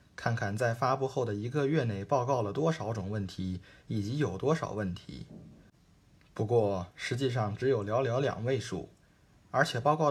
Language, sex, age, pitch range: Chinese, male, 20-39, 110-145 Hz